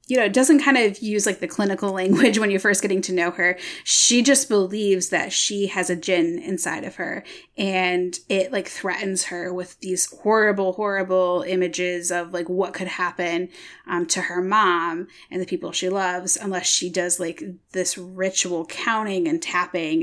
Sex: female